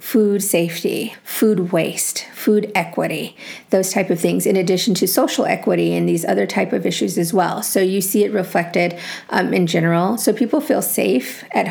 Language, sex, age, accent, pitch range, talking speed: English, female, 40-59, American, 175-215 Hz, 185 wpm